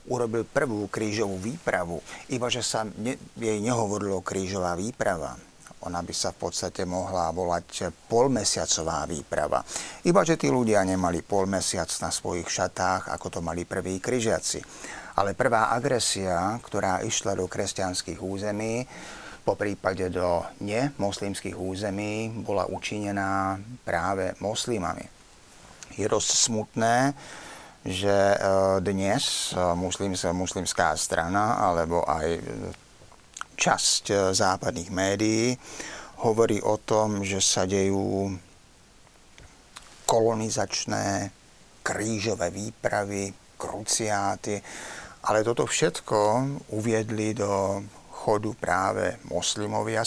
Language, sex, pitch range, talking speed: Slovak, male, 95-110 Hz, 100 wpm